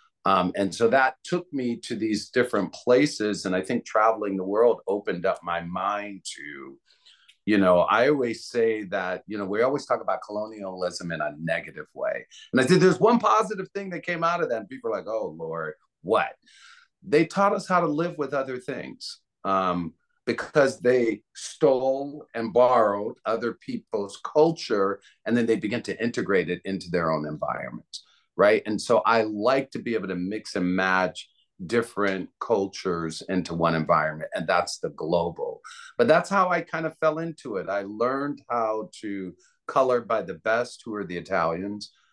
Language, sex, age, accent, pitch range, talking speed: English, male, 40-59, American, 90-135 Hz, 180 wpm